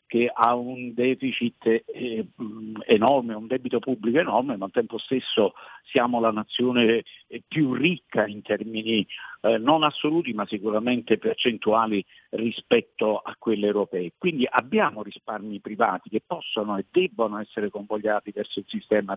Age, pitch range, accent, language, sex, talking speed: 50-69, 110-130 Hz, native, Italian, male, 140 wpm